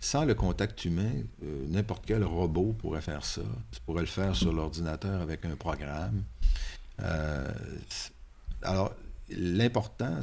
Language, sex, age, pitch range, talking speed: French, male, 50-69, 75-95 Hz, 135 wpm